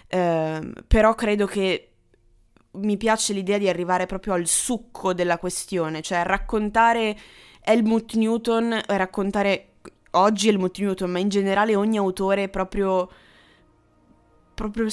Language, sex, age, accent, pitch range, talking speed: Italian, female, 20-39, native, 175-215 Hz, 115 wpm